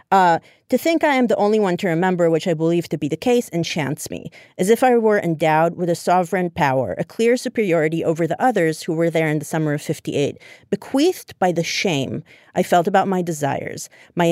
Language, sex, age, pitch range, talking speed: English, female, 30-49, 155-195 Hz, 220 wpm